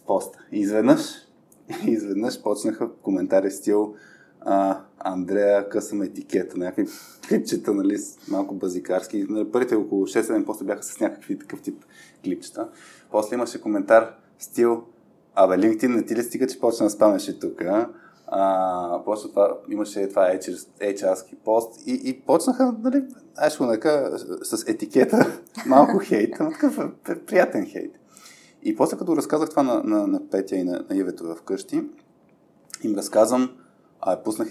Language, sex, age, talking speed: Bulgarian, male, 20-39, 125 wpm